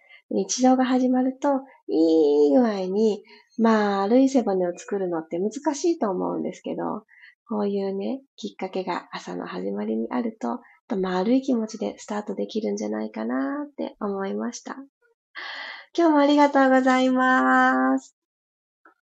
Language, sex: Japanese, female